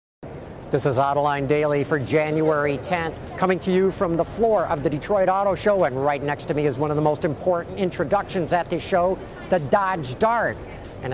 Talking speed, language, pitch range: 205 wpm, English, 150-195 Hz